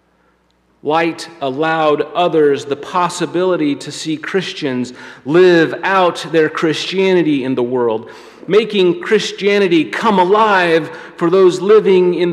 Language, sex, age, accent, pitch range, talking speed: English, male, 40-59, American, 145-200 Hz, 110 wpm